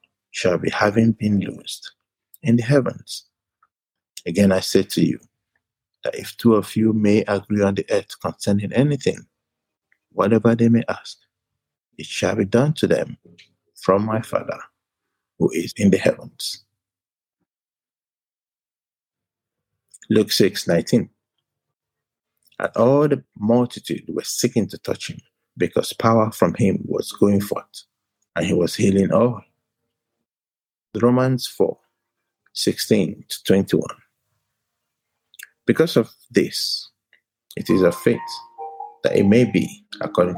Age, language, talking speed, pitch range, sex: 50-69, English, 125 wpm, 105-170 Hz, male